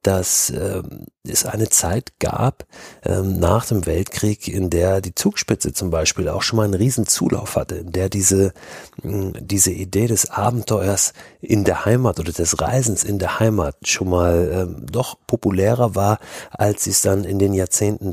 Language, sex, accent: German, male, German